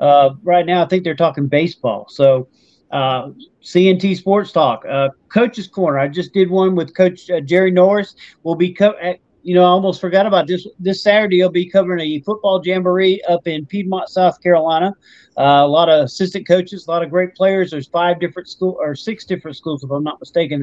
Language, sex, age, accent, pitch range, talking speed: English, male, 40-59, American, 160-195 Hz, 205 wpm